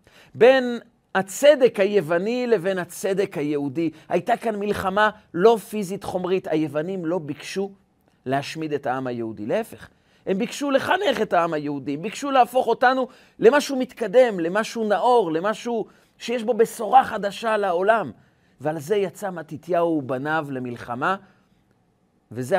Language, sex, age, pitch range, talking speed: Hebrew, male, 40-59, 140-215 Hz, 120 wpm